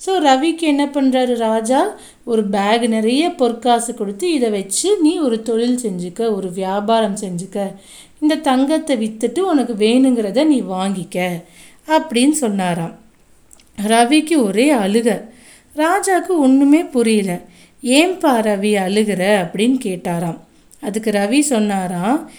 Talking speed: 115 wpm